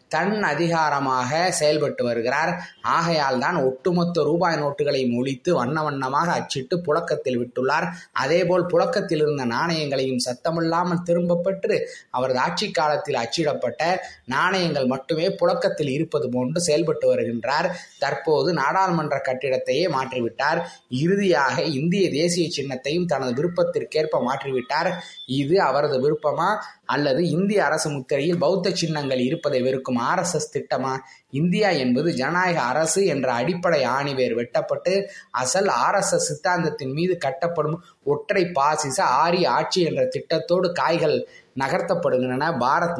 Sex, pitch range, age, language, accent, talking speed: male, 130-175 Hz, 20-39, Tamil, native, 110 wpm